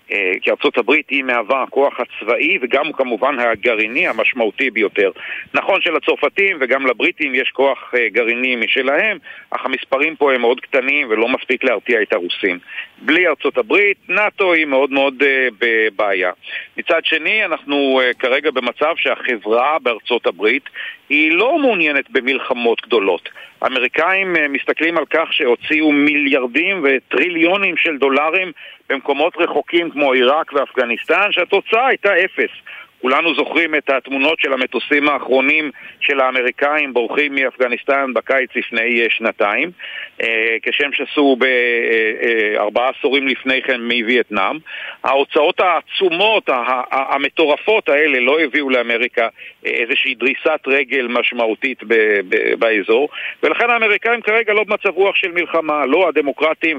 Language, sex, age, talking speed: Hebrew, male, 50-69, 120 wpm